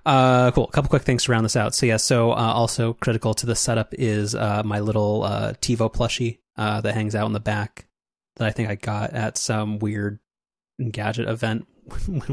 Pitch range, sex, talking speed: 105-125 Hz, male, 215 wpm